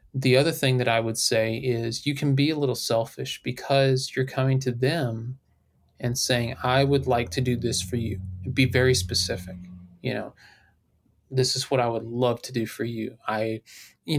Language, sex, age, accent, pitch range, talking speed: English, male, 30-49, American, 115-140 Hz, 195 wpm